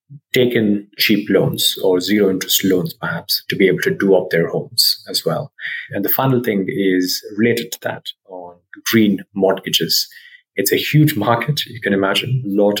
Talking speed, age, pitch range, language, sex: 180 wpm, 30-49, 95-115 Hz, English, male